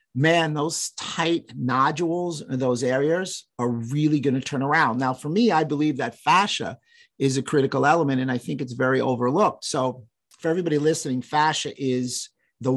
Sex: male